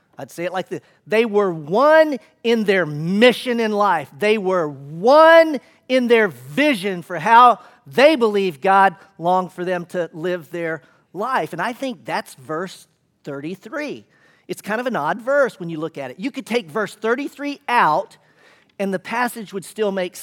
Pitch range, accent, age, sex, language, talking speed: 170-235 Hz, American, 40-59, male, English, 180 wpm